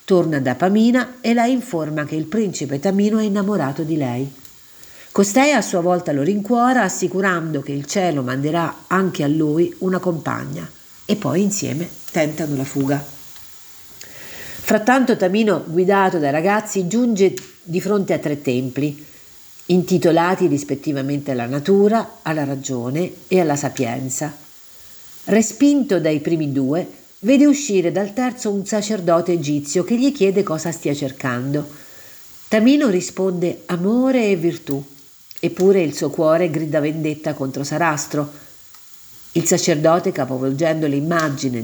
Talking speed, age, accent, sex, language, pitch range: 130 wpm, 50-69, native, female, Italian, 145-195 Hz